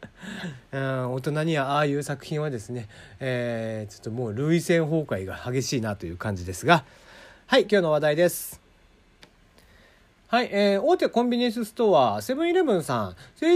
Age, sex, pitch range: 40-59, male, 135-215 Hz